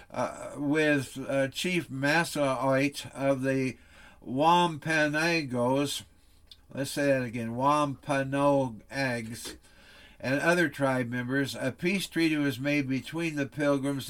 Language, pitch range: English, 130-165 Hz